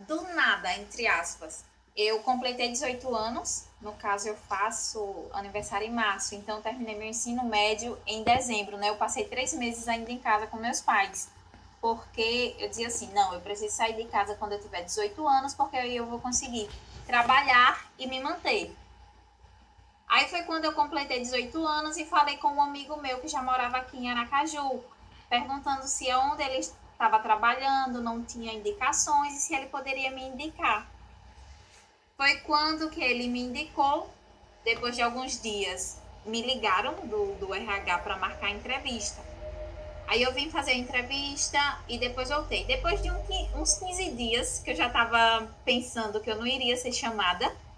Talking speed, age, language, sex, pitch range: 170 wpm, 10-29, Portuguese, female, 220-285 Hz